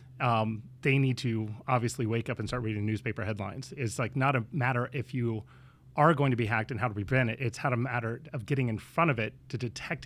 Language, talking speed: English, 240 wpm